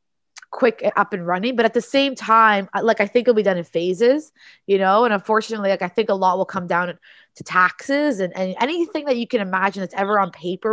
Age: 20-39